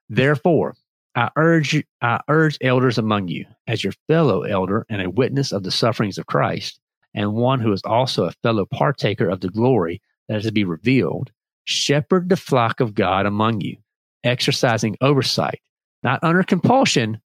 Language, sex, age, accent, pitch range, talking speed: English, male, 40-59, American, 105-140 Hz, 165 wpm